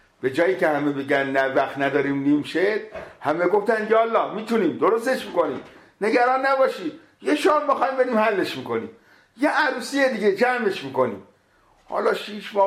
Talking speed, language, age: 145 wpm, English, 50-69